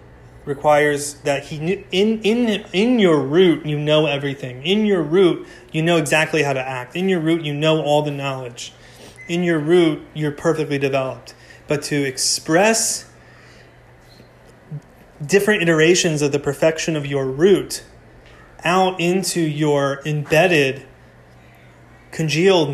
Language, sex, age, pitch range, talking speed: English, male, 30-49, 140-165 Hz, 130 wpm